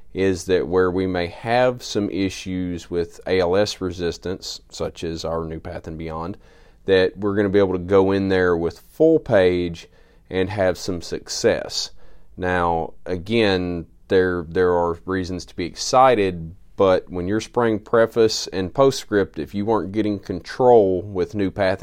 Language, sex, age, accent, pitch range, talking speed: English, male, 30-49, American, 85-100 Hz, 160 wpm